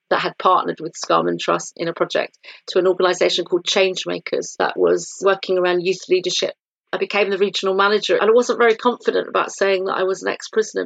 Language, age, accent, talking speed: English, 40-59, British, 205 wpm